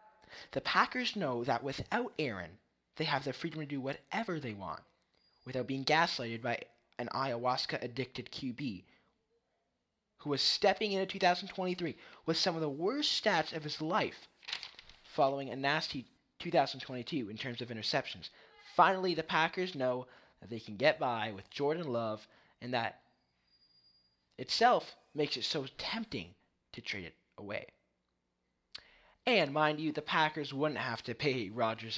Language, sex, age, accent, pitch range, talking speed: English, male, 20-39, American, 115-155 Hz, 145 wpm